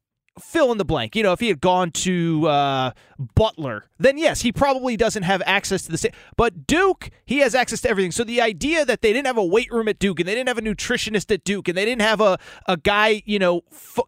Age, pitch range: 30-49, 160-225 Hz